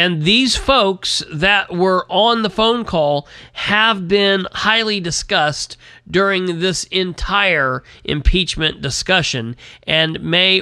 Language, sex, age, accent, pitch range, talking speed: English, male, 40-59, American, 155-195 Hz, 115 wpm